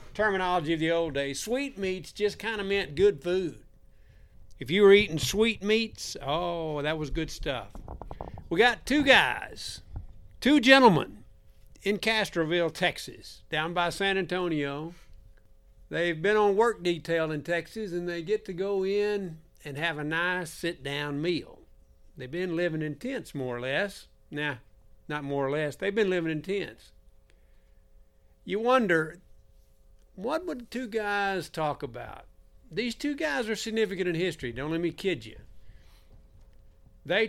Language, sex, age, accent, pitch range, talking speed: English, male, 60-79, American, 145-205 Hz, 155 wpm